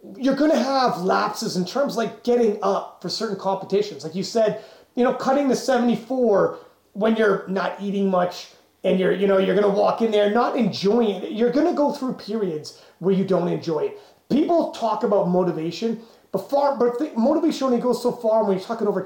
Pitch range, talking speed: 200-270 Hz, 205 wpm